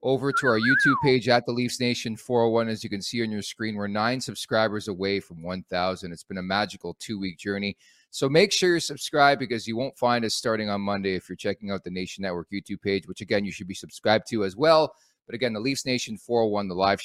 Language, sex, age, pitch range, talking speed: English, male, 30-49, 100-130 Hz, 240 wpm